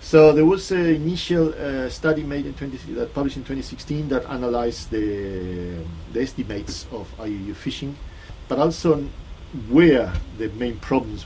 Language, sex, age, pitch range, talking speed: English, male, 40-59, 95-135 Hz, 160 wpm